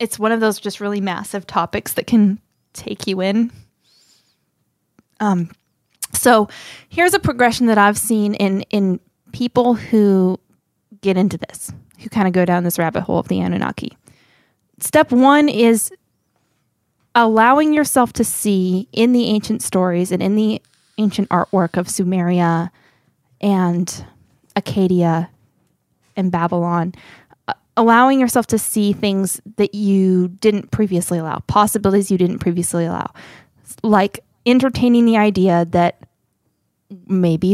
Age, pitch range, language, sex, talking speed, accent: 20-39, 185-225 Hz, English, female, 130 wpm, American